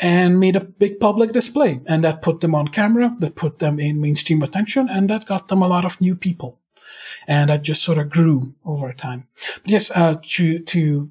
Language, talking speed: English, 215 wpm